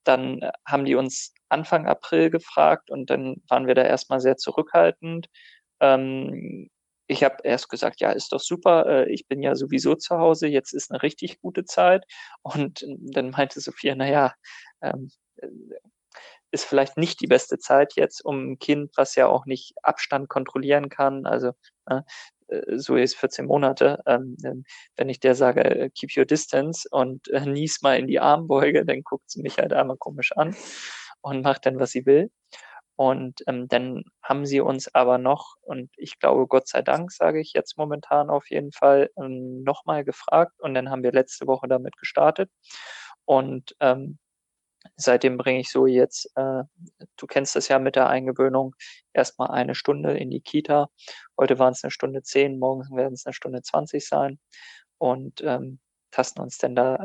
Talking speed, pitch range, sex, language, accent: 165 wpm, 130-145 Hz, male, German, German